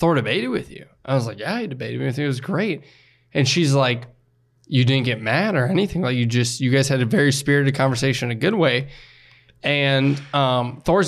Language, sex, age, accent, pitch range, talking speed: English, male, 20-39, American, 125-140 Hz, 225 wpm